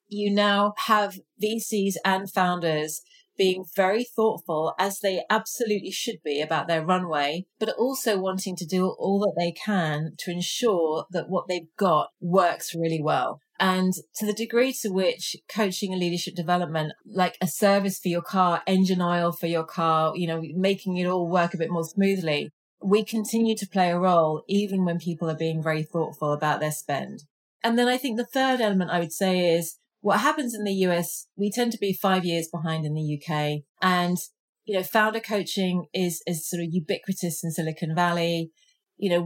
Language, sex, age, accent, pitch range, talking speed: English, female, 30-49, British, 170-205 Hz, 190 wpm